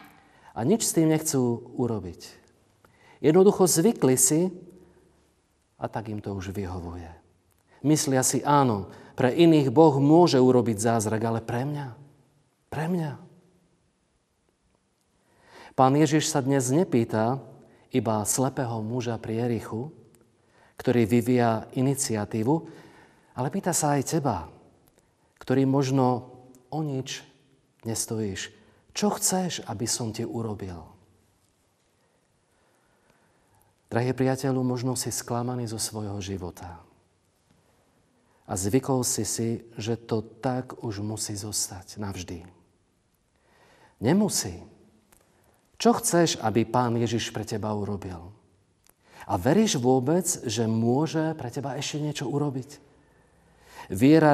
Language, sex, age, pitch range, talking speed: Slovak, male, 40-59, 110-145 Hz, 105 wpm